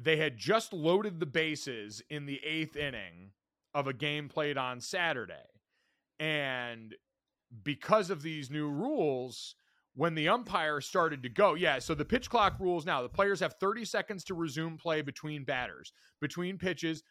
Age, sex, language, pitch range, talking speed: 30-49, male, English, 140-180 Hz, 165 wpm